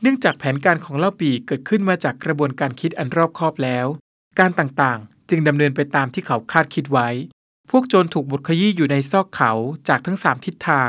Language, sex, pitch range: Thai, male, 140-180 Hz